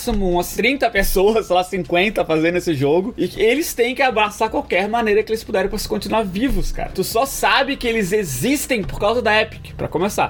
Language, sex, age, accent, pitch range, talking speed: Portuguese, male, 20-39, Brazilian, 145-205 Hz, 210 wpm